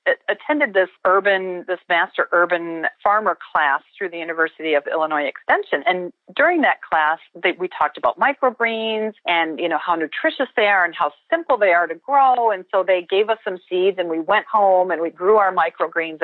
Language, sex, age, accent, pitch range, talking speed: English, female, 40-59, American, 170-225 Hz, 190 wpm